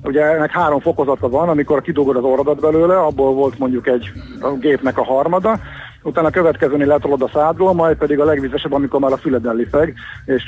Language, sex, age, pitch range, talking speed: Hungarian, male, 50-69, 130-160 Hz, 185 wpm